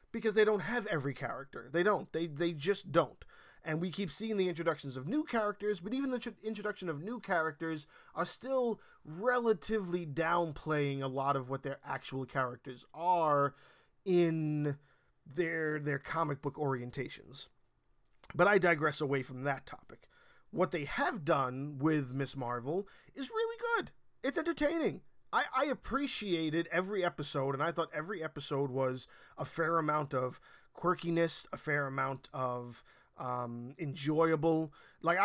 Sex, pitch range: male, 140-180 Hz